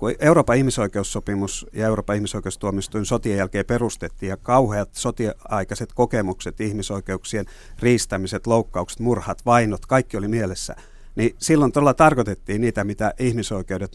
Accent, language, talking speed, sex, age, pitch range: native, Finnish, 115 wpm, male, 50-69, 100-120 Hz